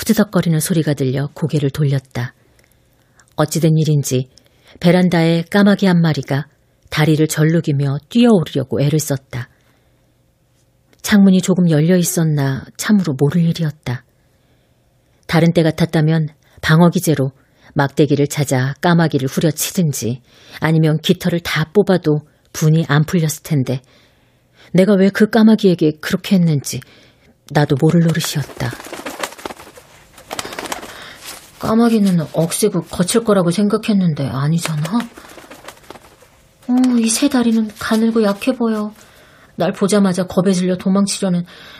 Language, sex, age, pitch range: Korean, female, 40-59, 145-195 Hz